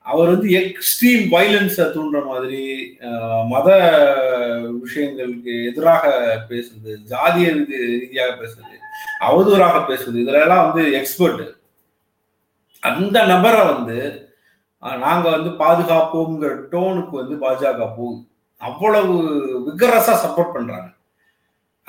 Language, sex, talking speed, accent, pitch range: Tamil, male, 90 wpm, native, 130-175 Hz